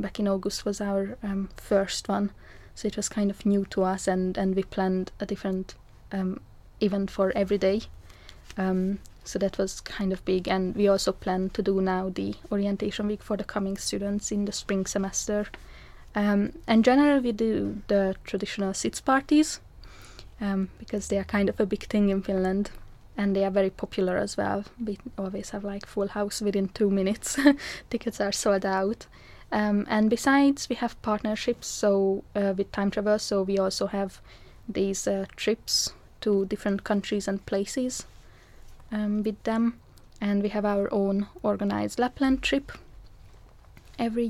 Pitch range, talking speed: 190-210 Hz, 170 wpm